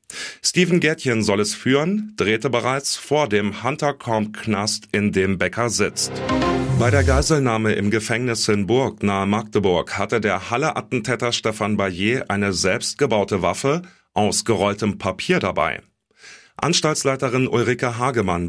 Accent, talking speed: German, 125 wpm